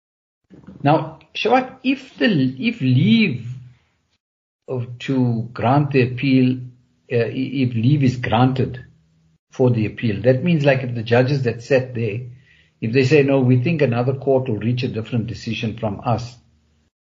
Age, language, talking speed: 60-79, English, 150 wpm